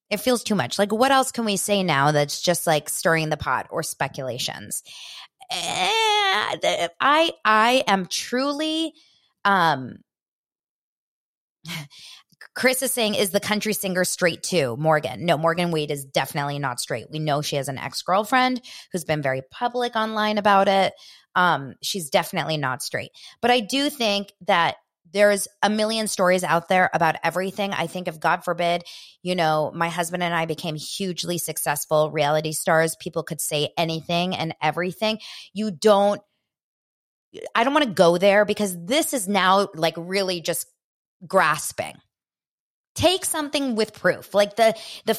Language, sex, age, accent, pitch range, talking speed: English, female, 20-39, American, 165-220 Hz, 155 wpm